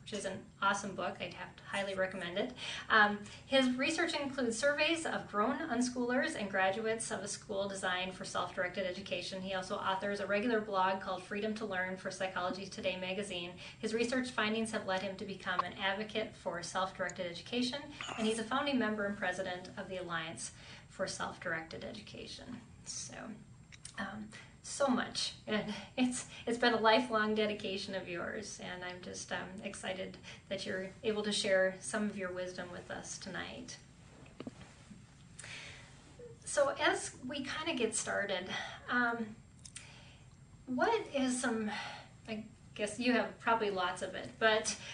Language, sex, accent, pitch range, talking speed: English, female, American, 185-225 Hz, 160 wpm